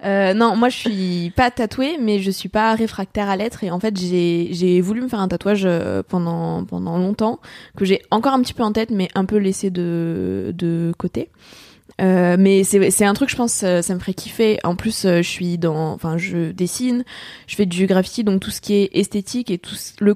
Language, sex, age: French, female, 20-39